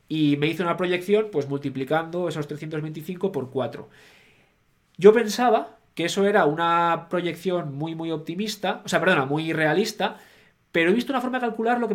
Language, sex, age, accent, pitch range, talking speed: Spanish, male, 20-39, Spanish, 140-195 Hz, 175 wpm